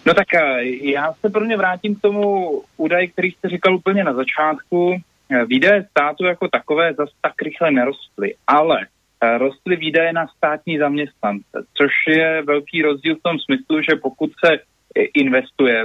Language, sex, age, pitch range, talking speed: Slovak, male, 30-49, 125-160 Hz, 150 wpm